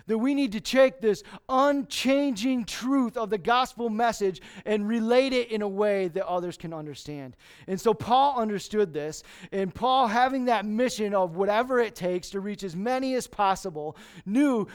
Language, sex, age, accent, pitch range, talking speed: English, male, 30-49, American, 195-245 Hz, 175 wpm